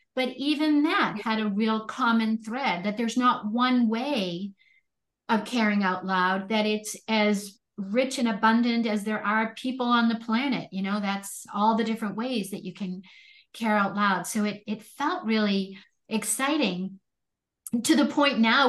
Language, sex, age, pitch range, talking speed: English, female, 50-69, 205-250 Hz, 170 wpm